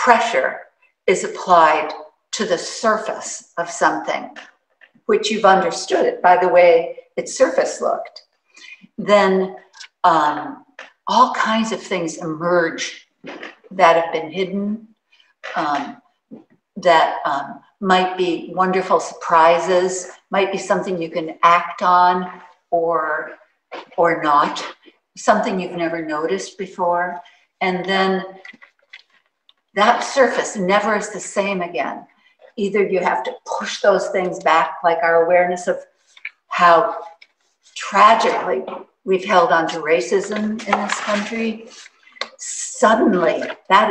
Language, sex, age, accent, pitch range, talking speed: English, female, 60-79, American, 170-200 Hz, 115 wpm